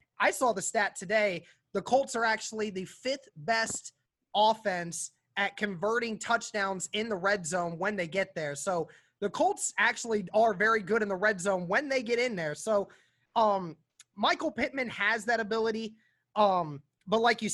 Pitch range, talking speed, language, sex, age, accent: 185-220 Hz, 175 wpm, English, male, 20-39, American